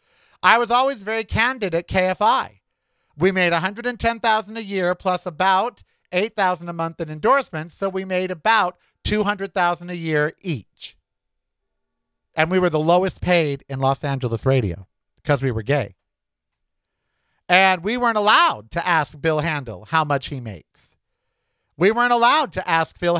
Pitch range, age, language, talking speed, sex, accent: 140-195 Hz, 50-69, English, 155 wpm, male, American